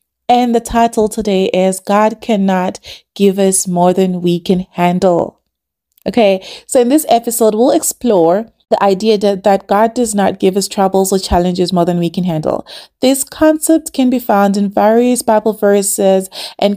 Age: 30-49